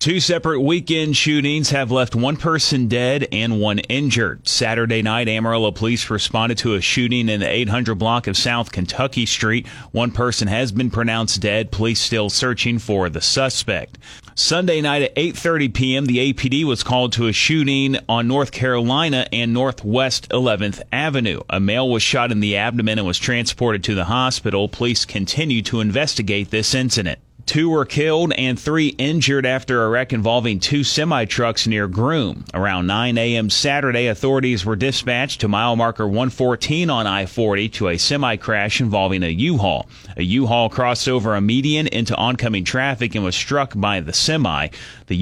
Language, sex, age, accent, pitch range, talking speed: English, male, 30-49, American, 105-130 Hz, 170 wpm